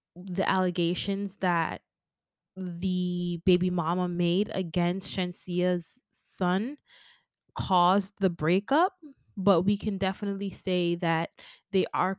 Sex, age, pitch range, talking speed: female, 20-39, 175-200 Hz, 105 wpm